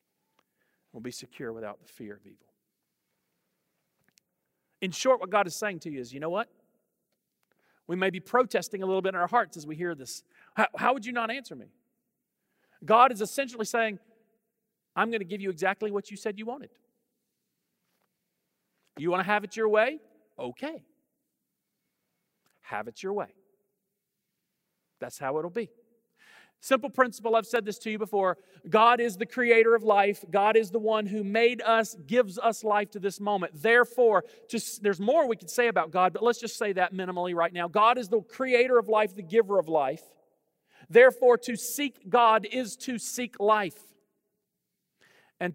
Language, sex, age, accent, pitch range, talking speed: English, male, 40-59, American, 180-230 Hz, 175 wpm